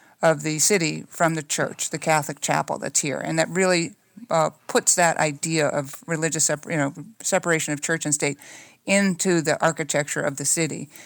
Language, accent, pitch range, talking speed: English, American, 150-165 Hz, 185 wpm